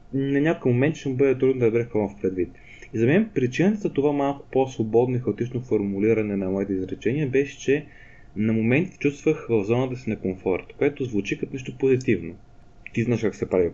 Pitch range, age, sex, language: 105-140 Hz, 20-39, male, Bulgarian